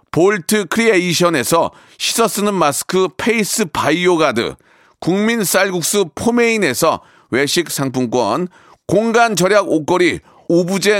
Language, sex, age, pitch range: Korean, male, 40-59, 160-215 Hz